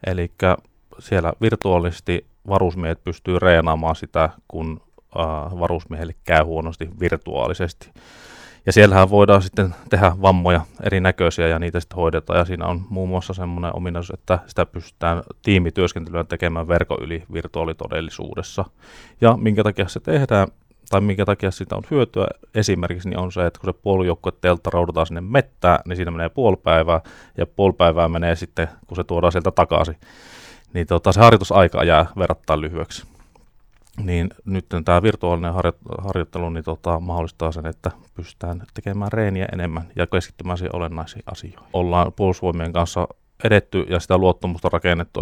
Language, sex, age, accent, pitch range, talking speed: Finnish, male, 30-49, native, 85-95 Hz, 145 wpm